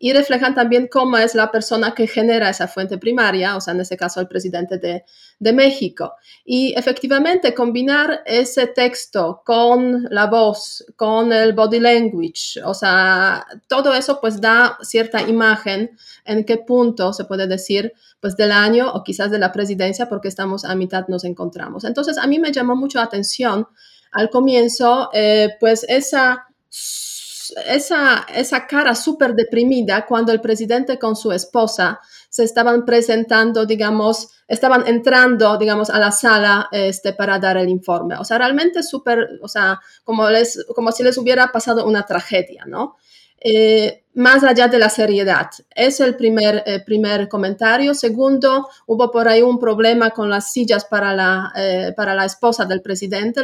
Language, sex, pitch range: Spanish, female, 200-245 Hz